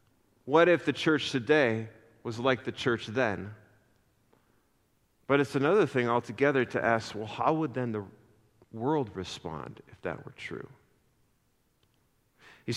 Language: English